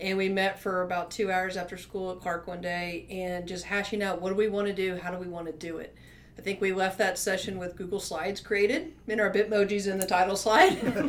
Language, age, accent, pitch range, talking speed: English, 40-59, American, 170-195 Hz, 255 wpm